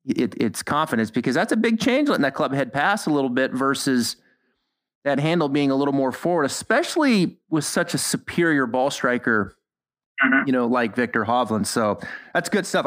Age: 30-49